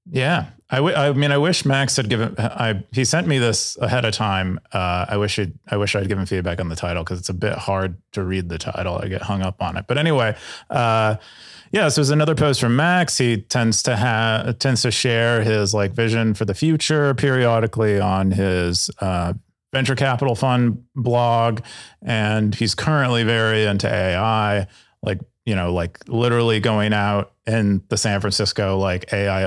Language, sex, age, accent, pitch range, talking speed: English, male, 30-49, American, 95-125 Hz, 195 wpm